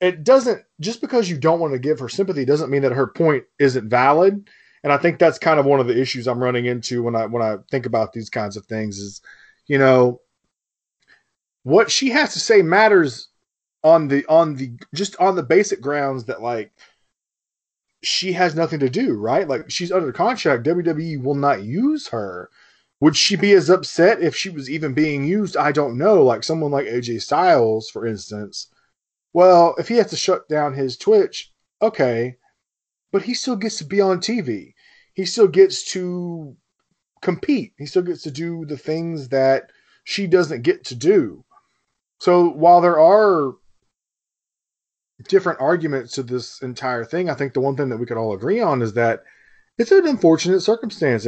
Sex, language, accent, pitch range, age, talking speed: male, English, American, 130-185 Hz, 20-39, 185 wpm